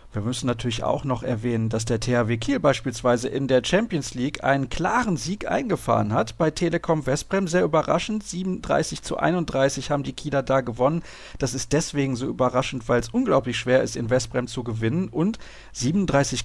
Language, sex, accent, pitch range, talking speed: German, male, German, 125-150 Hz, 180 wpm